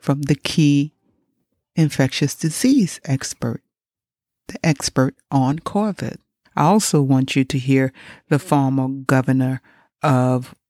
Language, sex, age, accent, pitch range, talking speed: English, female, 60-79, American, 125-155 Hz, 110 wpm